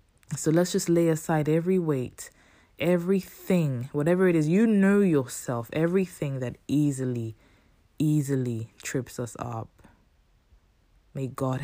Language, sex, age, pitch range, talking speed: English, female, 20-39, 120-145 Hz, 120 wpm